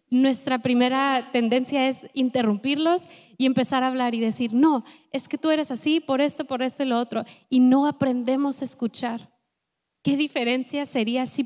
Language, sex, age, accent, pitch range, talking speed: Spanish, female, 20-39, Mexican, 235-275 Hz, 175 wpm